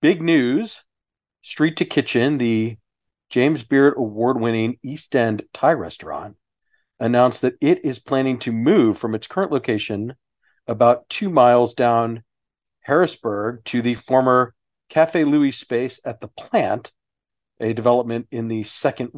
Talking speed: 135 wpm